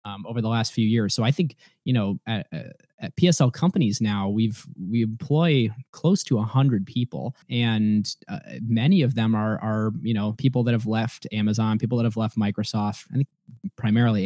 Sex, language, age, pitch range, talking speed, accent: male, English, 20-39, 105-125 Hz, 200 wpm, American